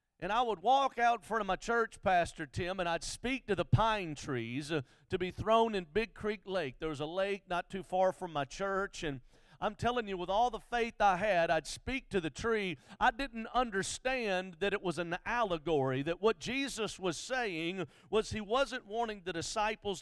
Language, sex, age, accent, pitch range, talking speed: English, male, 50-69, American, 175-230 Hz, 215 wpm